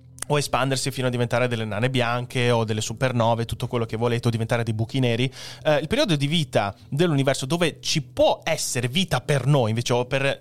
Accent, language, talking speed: native, Italian, 210 wpm